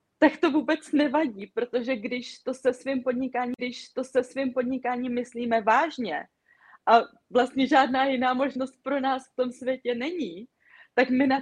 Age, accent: 20-39, native